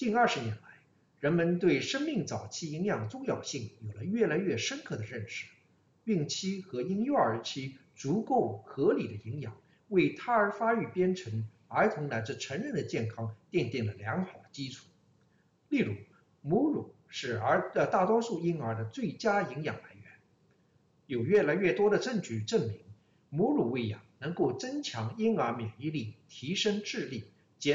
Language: English